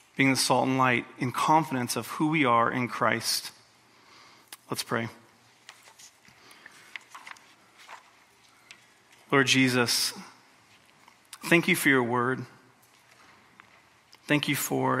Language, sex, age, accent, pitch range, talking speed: English, male, 30-49, American, 130-145 Hz, 100 wpm